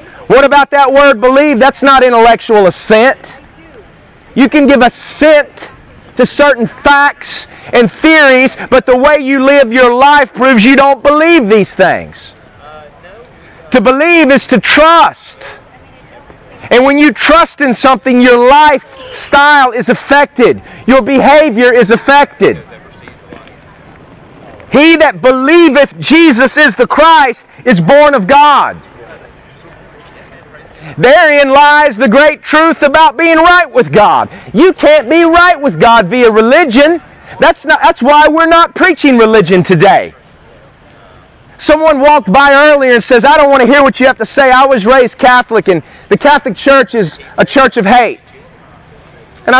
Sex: male